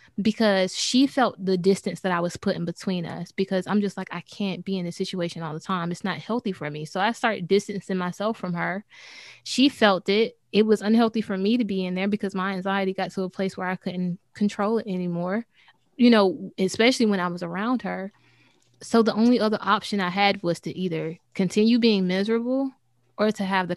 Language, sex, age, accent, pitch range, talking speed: English, female, 20-39, American, 180-225 Hz, 215 wpm